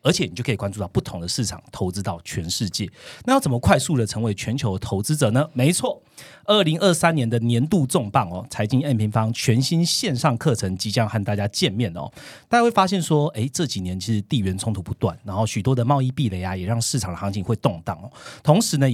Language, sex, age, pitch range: Chinese, male, 30-49, 105-140 Hz